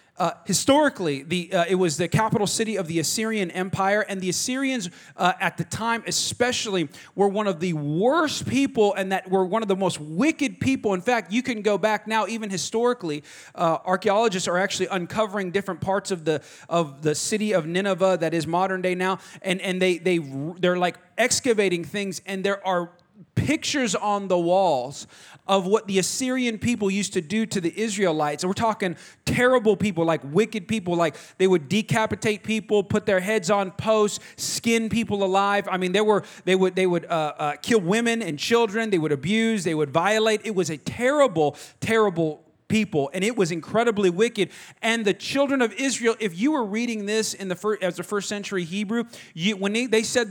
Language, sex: English, male